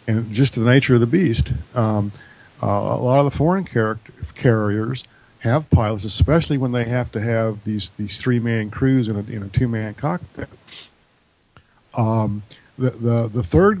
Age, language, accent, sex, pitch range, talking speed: 50-69, English, American, male, 105-130 Hz, 175 wpm